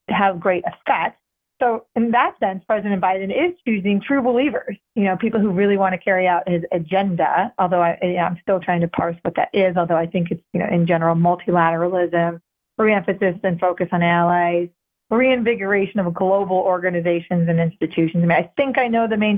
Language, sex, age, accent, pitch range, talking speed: English, female, 40-59, American, 180-210 Hz, 195 wpm